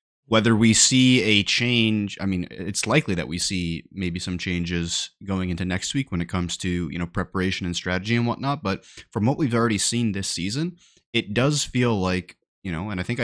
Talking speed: 215 wpm